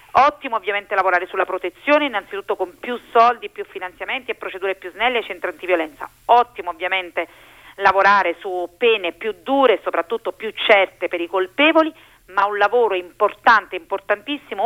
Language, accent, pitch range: Italian, native, 185-235 Hz